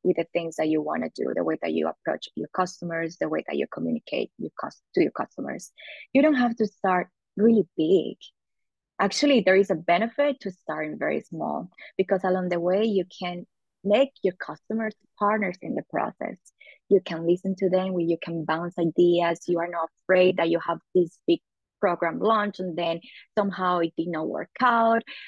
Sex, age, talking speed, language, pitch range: female, 20-39, 195 wpm, English, 170-210 Hz